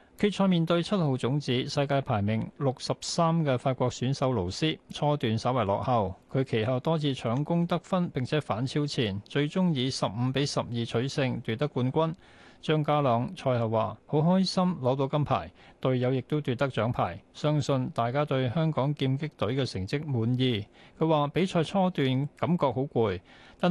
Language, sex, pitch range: Chinese, male, 120-155 Hz